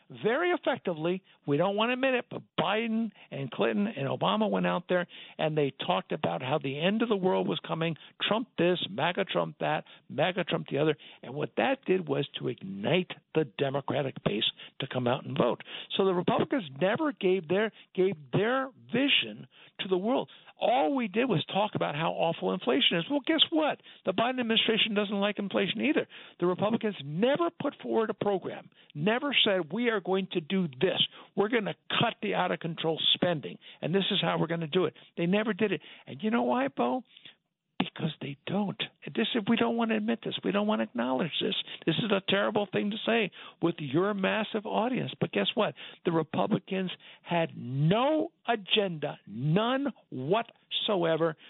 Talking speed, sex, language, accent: 190 wpm, male, English, American